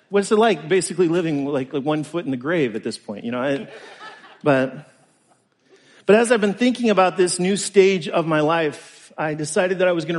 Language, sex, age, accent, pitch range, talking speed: English, male, 40-59, American, 150-195 Hz, 220 wpm